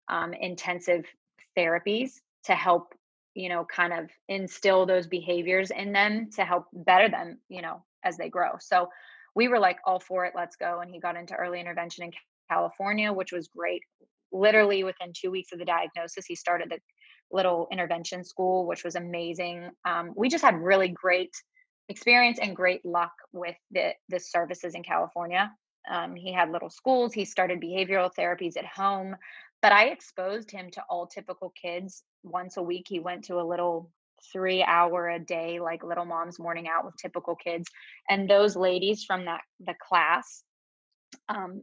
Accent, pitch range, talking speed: American, 175-200 Hz, 175 wpm